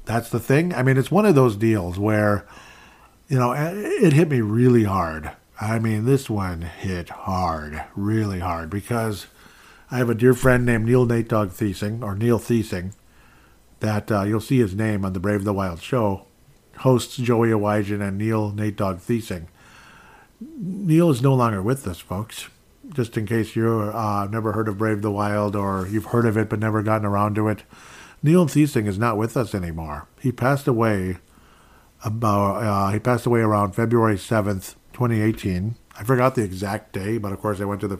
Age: 50-69